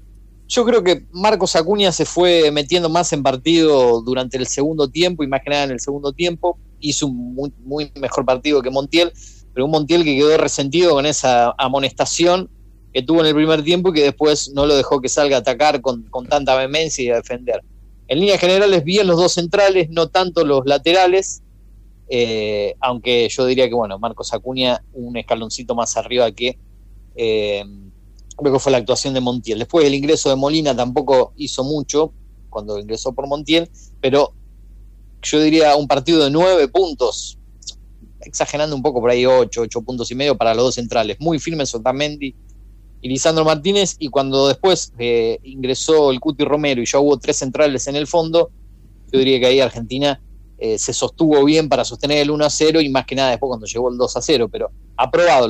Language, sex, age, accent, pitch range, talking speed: Spanish, male, 30-49, Argentinian, 120-155 Hz, 190 wpm